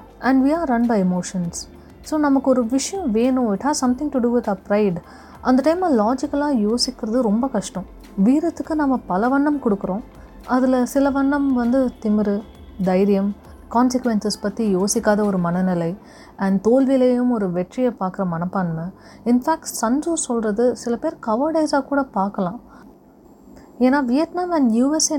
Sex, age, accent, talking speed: female, 30-49, Indian, 100 wpm